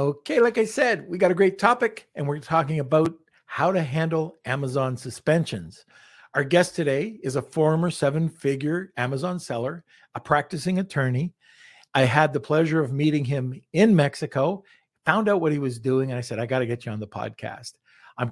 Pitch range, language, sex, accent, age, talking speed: 125-165 Hz, English, male, American, 50-69, 185 wpm